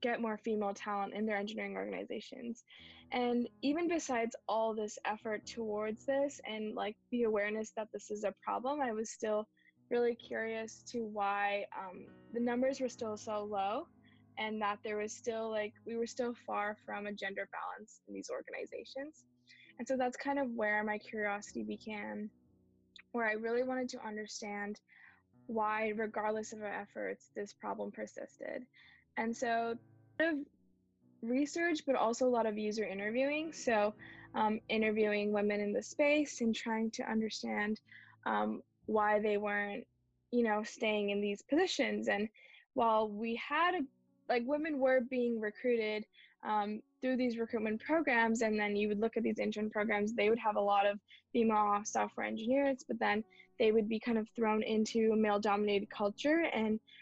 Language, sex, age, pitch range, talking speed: English, female, 10-29, 205-240 Hz, 165 wpm